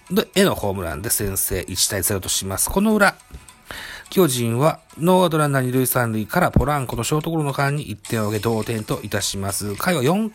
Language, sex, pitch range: Japanese, male, 105-150 Hz